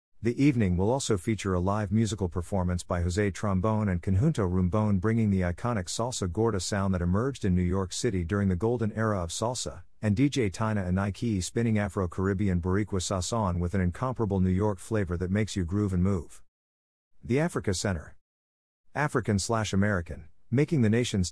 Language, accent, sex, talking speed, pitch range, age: English, American, male, 175 wpm, 90-115 Hz, 50-69